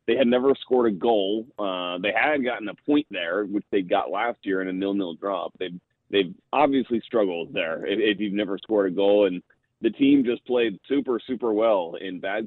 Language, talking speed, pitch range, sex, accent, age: English, 205 wpm, 100-115 Hz, male, American, 30-49